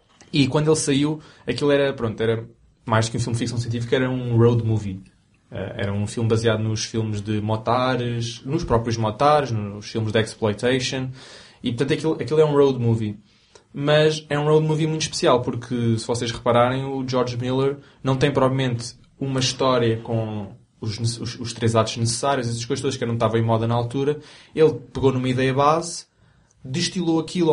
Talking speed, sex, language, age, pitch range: 190 wpm, male, Portuguese, 20-39, 115-150 Hz